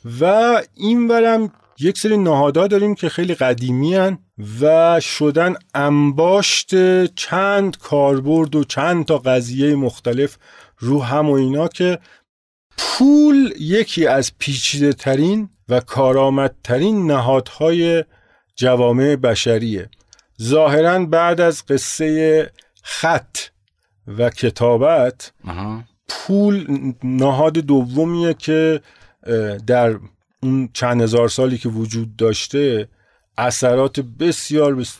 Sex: male